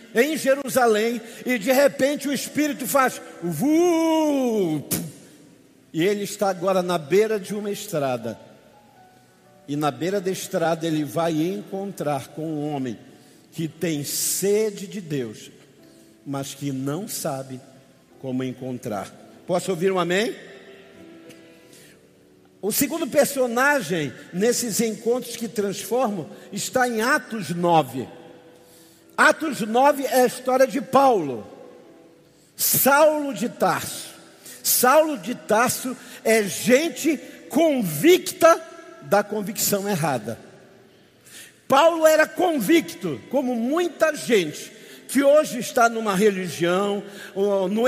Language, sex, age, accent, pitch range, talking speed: Portuguese, male, 50-69, Brazilian, 180-260 Hz, 105 wpm